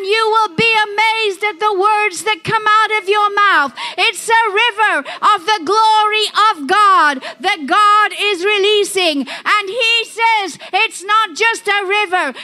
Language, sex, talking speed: English, female, 160 wpm